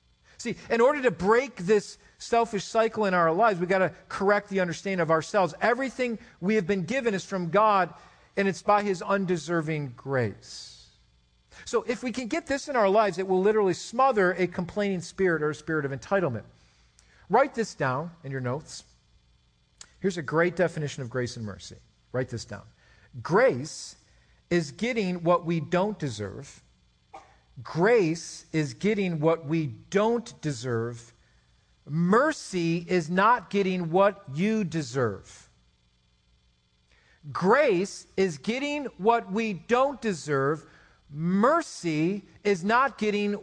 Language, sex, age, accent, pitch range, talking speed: English, male, 50-69, American, 150-215 Hz, 140 wpm